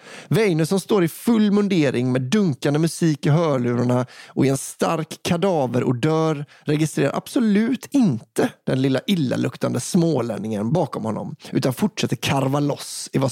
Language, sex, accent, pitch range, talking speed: English, male, Swedish, 130-175 Hz, 150 wpm